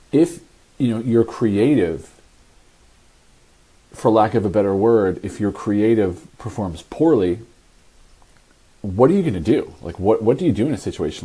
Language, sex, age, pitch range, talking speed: English, male, 40-59, 95-120 Hz, 165 wpm